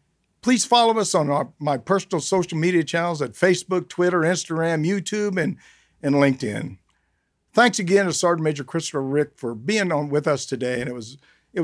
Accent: American